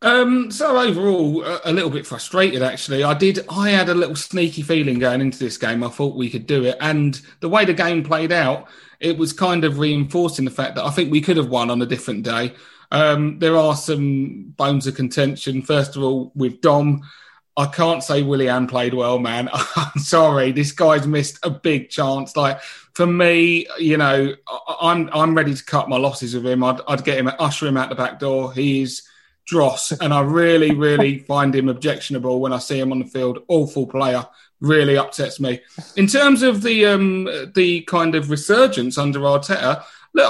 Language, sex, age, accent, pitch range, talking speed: English, male, 30-49, British, 135-175 Hz, 200 wpm